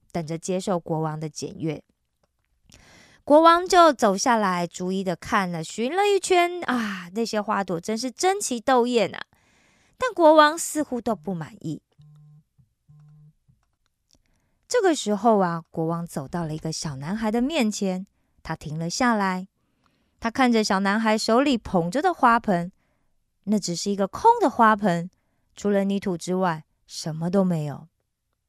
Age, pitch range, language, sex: 20-39, 180-265 Hz, Korean, female